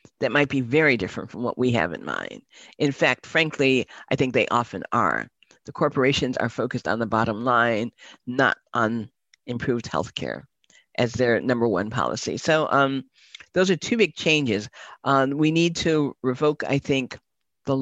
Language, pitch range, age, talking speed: English, 130-160 Hz, 50-69, 170 wpm